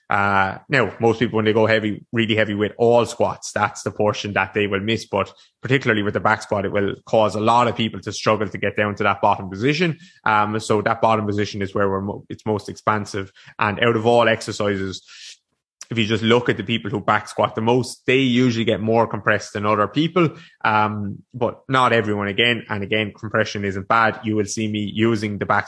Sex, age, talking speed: male, 20-39, 225 wpm